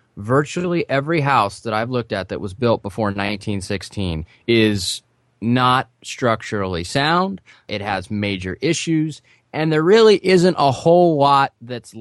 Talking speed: 140 wpm